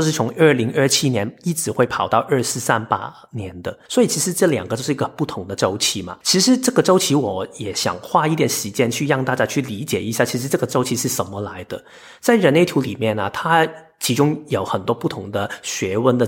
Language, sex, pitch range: Chinese, male, 110-150 Hz